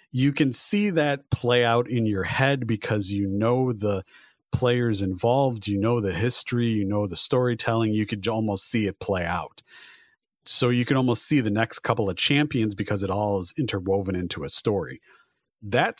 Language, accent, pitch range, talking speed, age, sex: English, American, 100-125 Hz, 185 wpm, 40-59, male